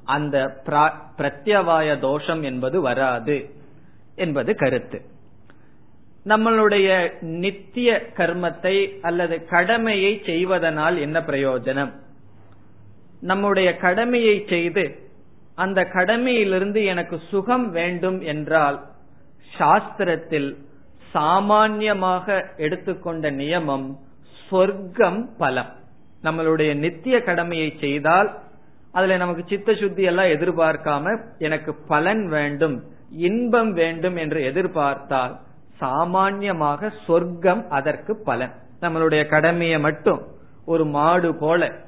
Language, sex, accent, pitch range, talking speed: Tamil, male, native, 145-185 Hz, 70 wpm